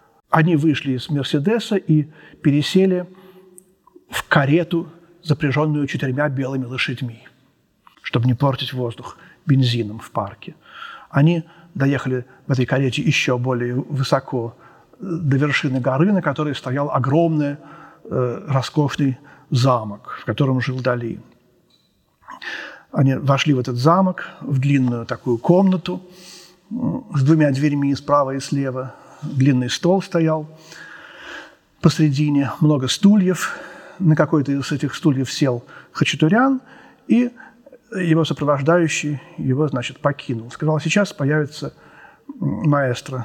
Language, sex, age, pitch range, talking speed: Russian, male, 40-59, 135-175 Hz, 110 wpm